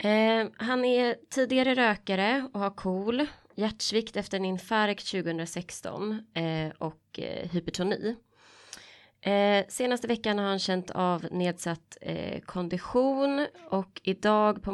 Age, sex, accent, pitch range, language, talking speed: 20-39, female, native, 175-215 Hz, Swedish, 125 wpm